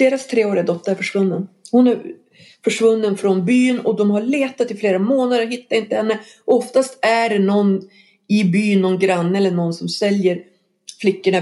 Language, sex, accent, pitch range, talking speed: English, female, Swedish, 180-225 Hz, 180 wpm